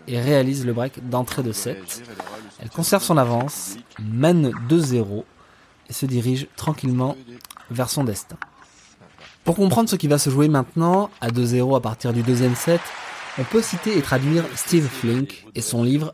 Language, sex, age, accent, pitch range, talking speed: French, male, 20-39, French, 120-150 Hz, 165 wpm